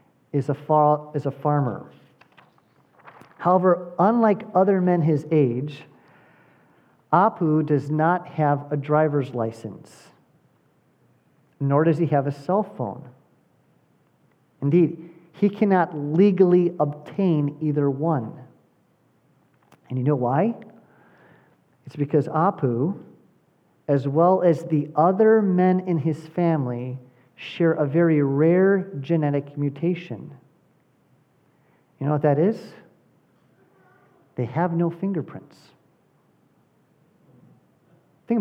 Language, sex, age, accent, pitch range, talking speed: English, male, 40-59, American, 140-170 Hz, 100 wpm